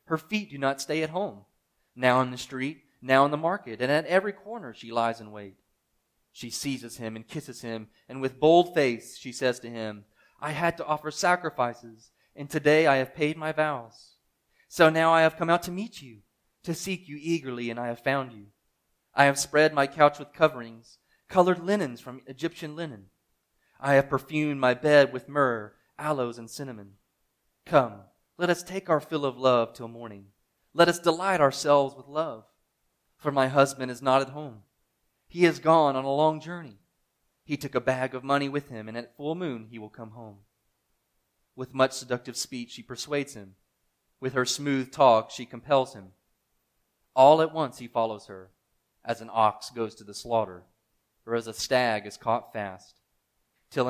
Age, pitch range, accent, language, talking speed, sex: 30-49, 115-150 Hz, American, English, 190 wpm, male